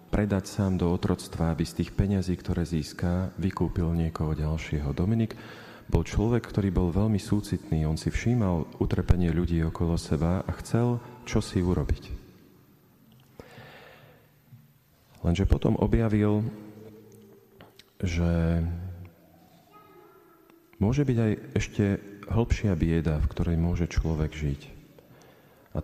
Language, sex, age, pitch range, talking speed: Slovak, male, 40-59, 85-100 Hz, 110 wpm